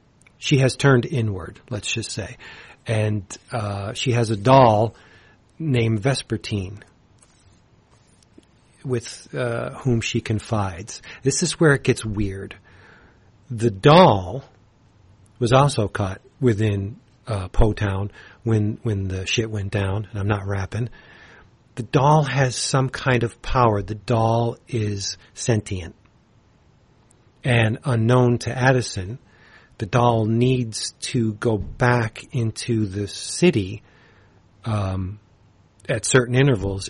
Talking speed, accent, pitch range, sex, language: 120 wpm, American, 105-130 Hz, male, English